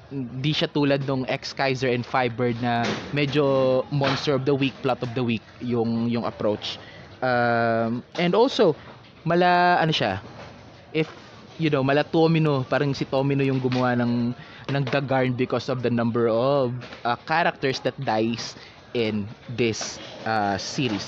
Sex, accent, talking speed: male, native, 150 wpm